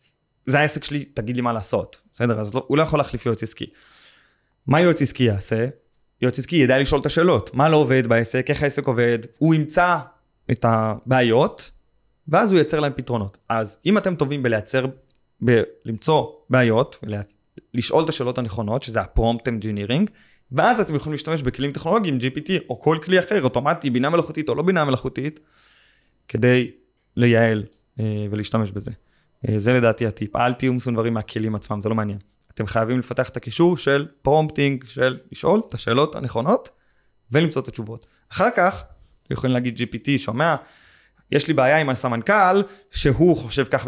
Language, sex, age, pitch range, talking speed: Hebrew, male, 20-39, 115-150 Hz, 165 wpm